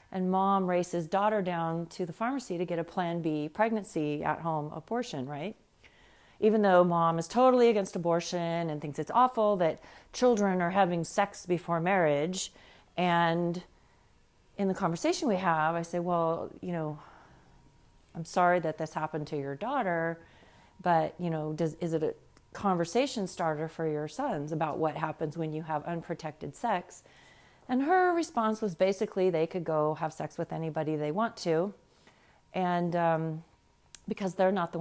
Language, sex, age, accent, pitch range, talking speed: English, female, 40-59, American, 165-210 Hz, 165 wpm